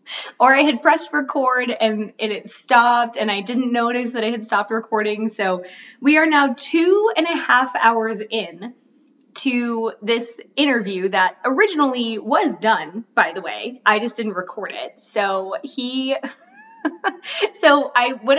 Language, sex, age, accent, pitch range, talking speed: English, female, 20-39, American, 210-265 Hz, 155 wpm